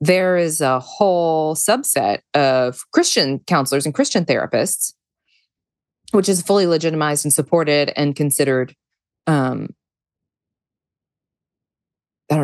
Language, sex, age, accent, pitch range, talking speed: English, female, 20-39, American, 145-190 Hz, 100 wpm